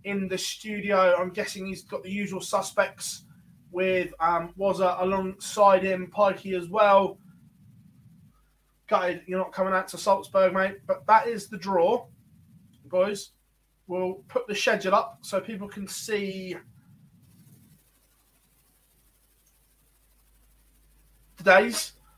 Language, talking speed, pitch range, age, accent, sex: English, 115 wpm, 185-210 Hz, 20-39, British, male